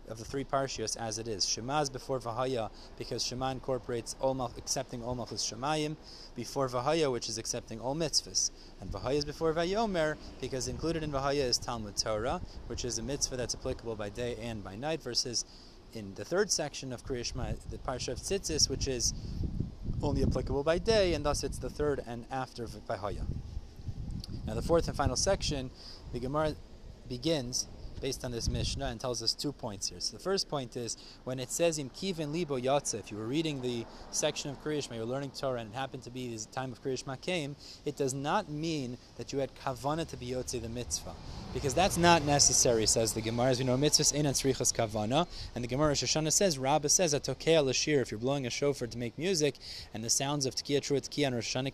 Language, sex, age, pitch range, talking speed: English, male, 30-49, 120-145 Hz, 205 wpm